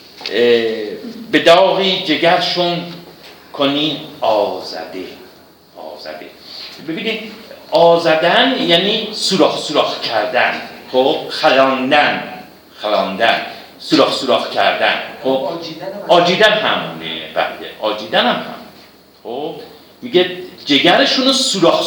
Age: 50-69